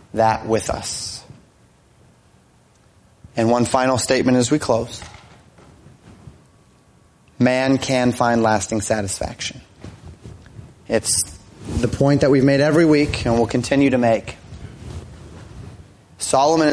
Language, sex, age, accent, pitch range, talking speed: English, male, 30-49, American, 115-135 Hz, 105 wpm